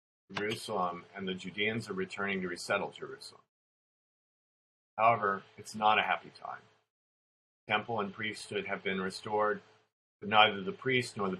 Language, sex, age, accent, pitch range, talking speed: English, male, 40-59, American, 90-115 Hz, 140 wpm